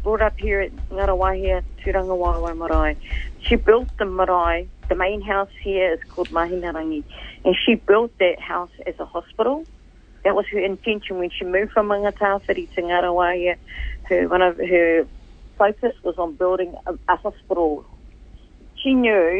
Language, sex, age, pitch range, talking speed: English, female, 40-59, 175-215 Hz, 155 wpm